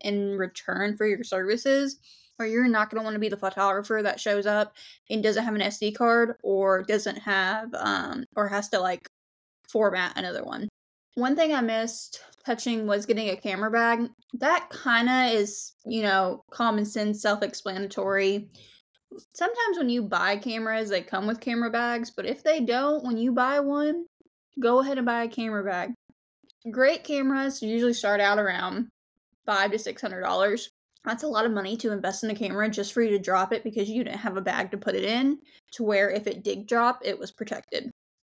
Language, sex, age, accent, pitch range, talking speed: English, female, 10-29, American, 200-240 Hz, 190 wpm